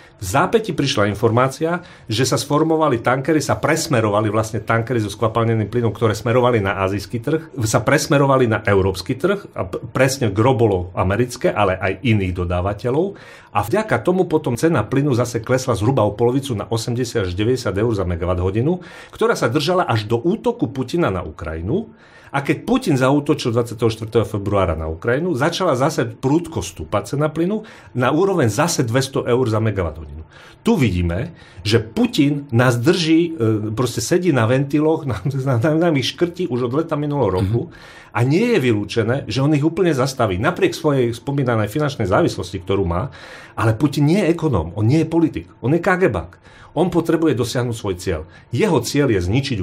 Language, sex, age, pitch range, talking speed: Slovak, male, 40-59, 105-155 Hz, 160 wpm